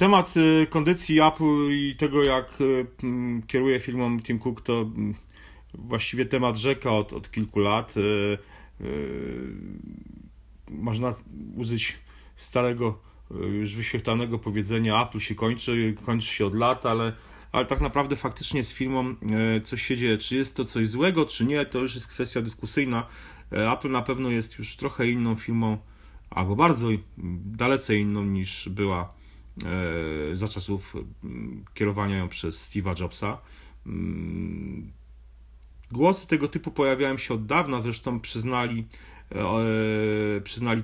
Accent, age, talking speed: native, 30-49, 125 wpm